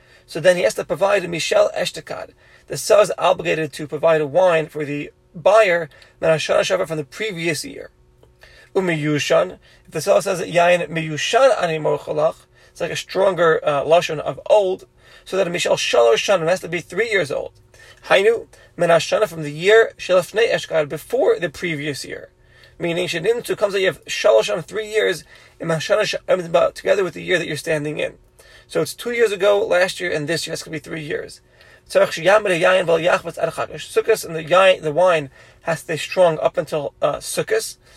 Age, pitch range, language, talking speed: 30-49, 160-205 Hz, English, 170 wpm